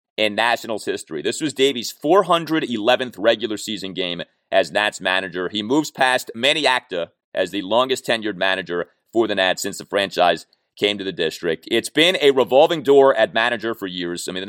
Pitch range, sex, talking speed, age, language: 105-145 Hz, male, 185 wpm, 30-49, English